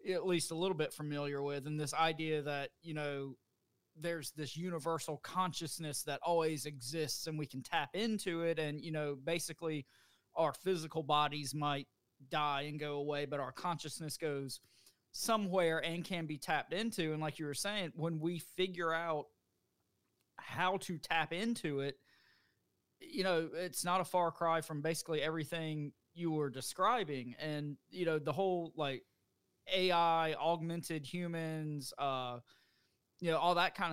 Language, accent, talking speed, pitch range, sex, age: English, American, 160 wpm, 145-170 Hz, male, 30-49